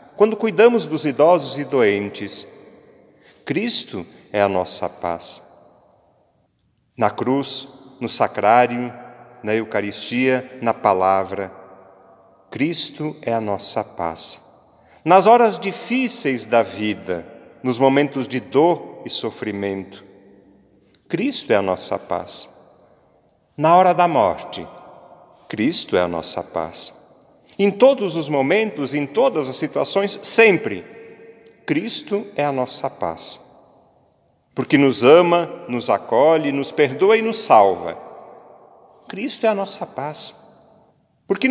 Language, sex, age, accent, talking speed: Portuguese, male, 40-59, Brazilian, 115 wpm